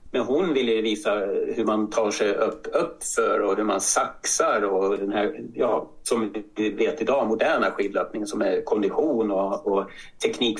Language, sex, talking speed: Swedish, male, 170 wpm